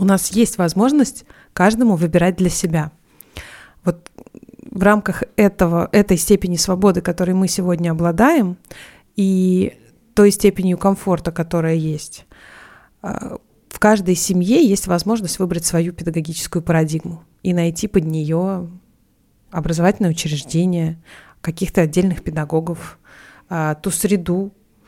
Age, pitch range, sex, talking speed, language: 30-49, 165-200 Hz, female, 105 wpm, Russian